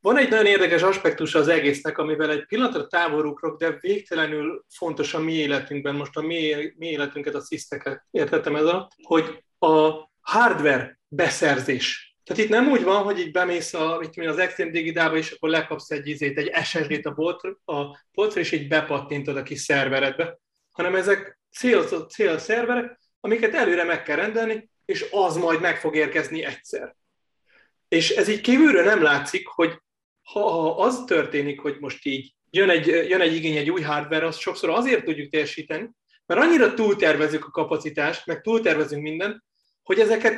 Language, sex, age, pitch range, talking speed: Hungarian, male, 30-49, 155-225 Hz, 165 wpm